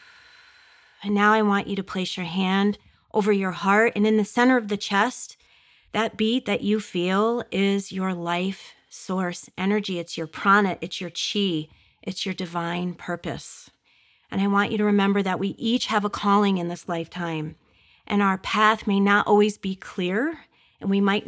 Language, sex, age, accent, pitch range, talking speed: English, female, 40-59, American, 185-210 Hz, 185 wpm